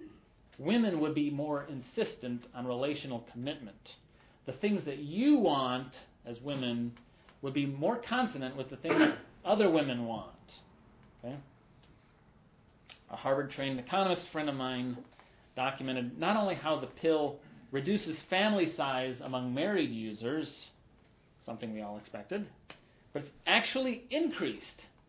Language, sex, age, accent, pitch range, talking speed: English, male, 40-59, American, 125-180 Hz, 125 wpm